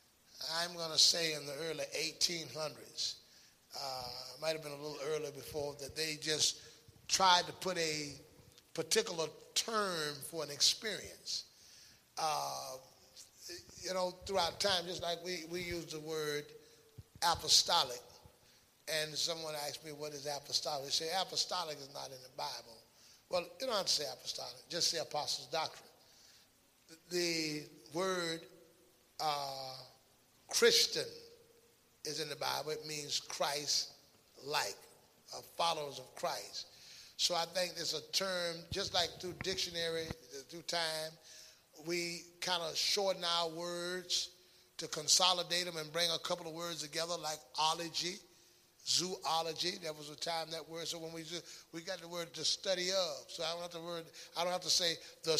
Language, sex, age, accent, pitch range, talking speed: English, male, 30-49, American, 150-175 Hz, 155 wpm